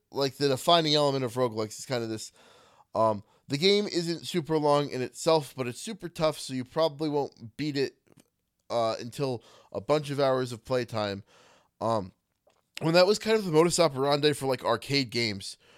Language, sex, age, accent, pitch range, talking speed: English, male, 20-39, American, 120-150 Hz, 185 wpm